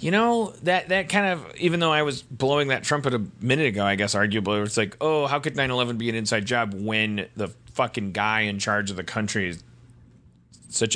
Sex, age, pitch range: male, 30-49, 105-130 Hz